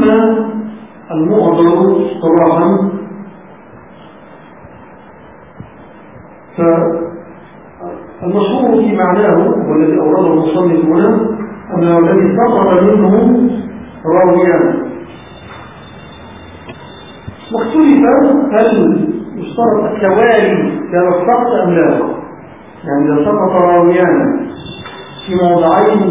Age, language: 50-69, English